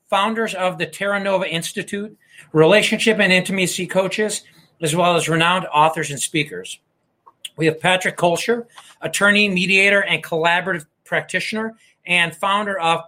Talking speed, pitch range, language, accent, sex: 135 wpm, 170-215 Hz, English, American, male